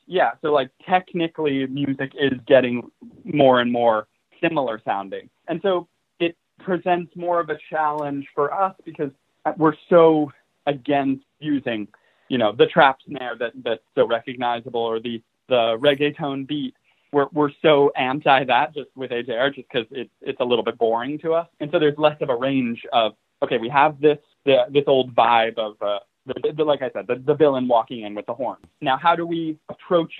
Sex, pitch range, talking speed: male, 125-155 Hz, 190 wpm